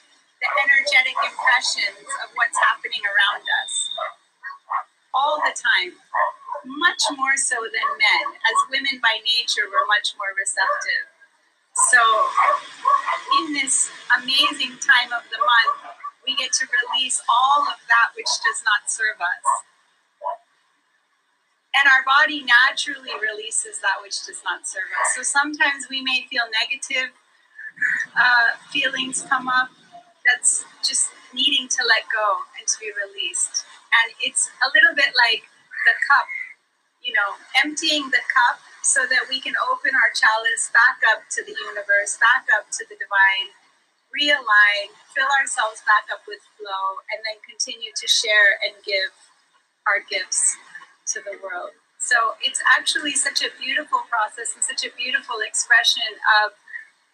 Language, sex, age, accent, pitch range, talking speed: English, female, 30-49, American, 235-370 Hz, 145 wpm